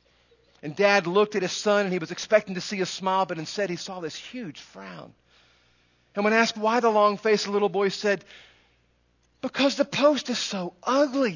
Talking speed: 190 wpm